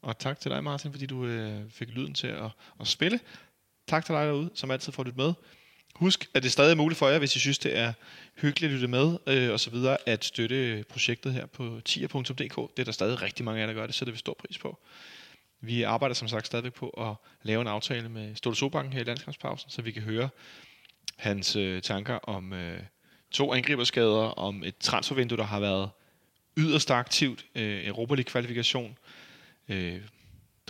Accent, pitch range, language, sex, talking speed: native, 110-130 Hz, Danish, male, 200 wpm